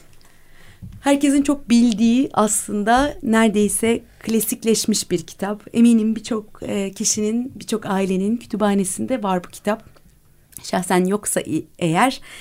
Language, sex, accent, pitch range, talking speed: Turkish, female, native, 170-215 Hz, 95 wpm